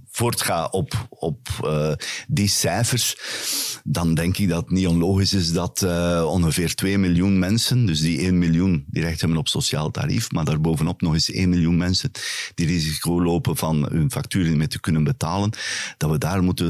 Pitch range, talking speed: 80-100 Hz, 185 wpm